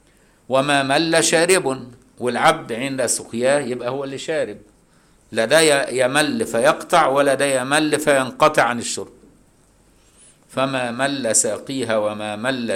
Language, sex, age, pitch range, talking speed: Arabic, male, 60-79, 110-140 Hz, 110 wpm